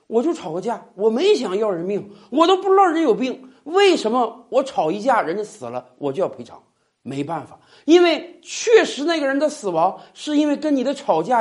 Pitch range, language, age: 205-305 Hz, Chinese, 50-69